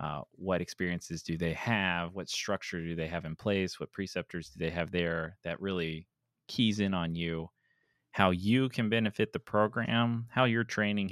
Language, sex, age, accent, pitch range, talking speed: English, male, 20-39, American, 90-115 Hz, 185 wpm